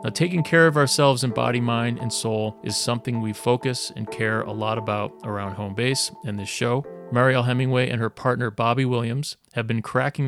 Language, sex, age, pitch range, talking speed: English, male, 30-49, 110-130 Hz, 205 wpm